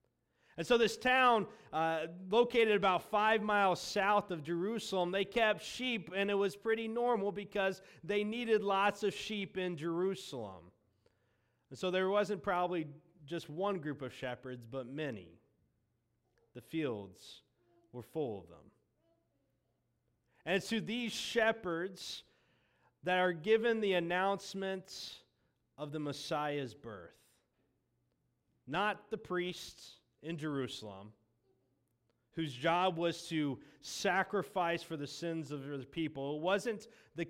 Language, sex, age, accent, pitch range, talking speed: English, male, 30-49, American, 150-205 Hz, 125 wpm